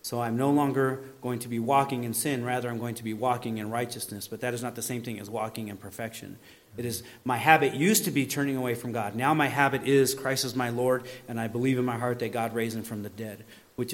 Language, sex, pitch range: English, male, 120-140 Hz